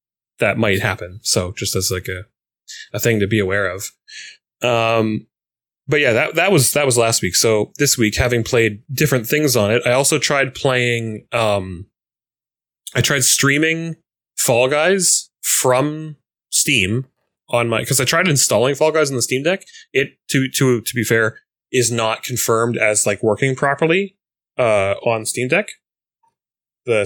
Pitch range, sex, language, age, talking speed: 110-135 Hz, male, English, 10-29, 165 wpm